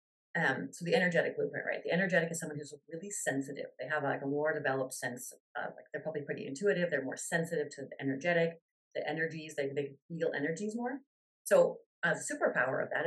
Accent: American